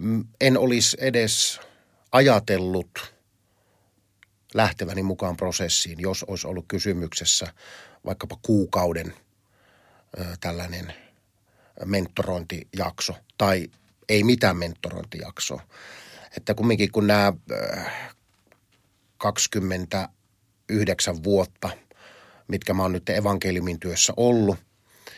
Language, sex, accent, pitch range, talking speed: Finnish, male, native, 95-110 Hz, 80 wpm